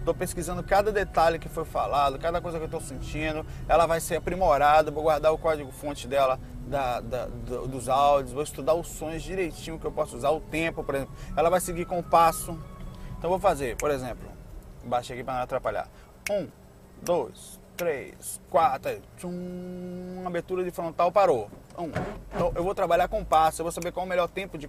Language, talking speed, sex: Portuguese, 195 wpm, male